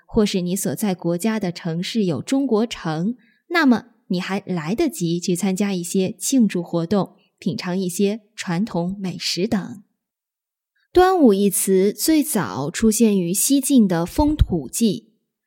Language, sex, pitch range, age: Chinese, female, 180-245 Hz, 20-39